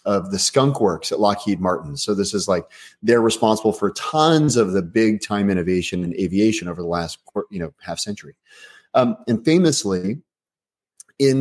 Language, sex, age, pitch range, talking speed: English, male, 30-49, 95-115 Hz, 175 wpm